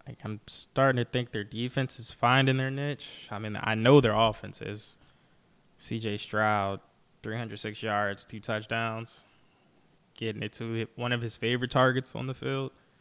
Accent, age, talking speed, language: American, 20-39, 160 wpm, English